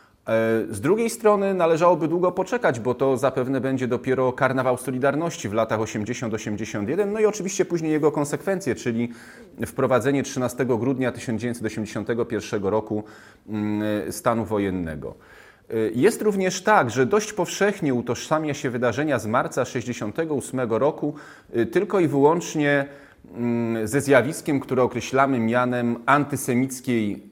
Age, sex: 30-49, male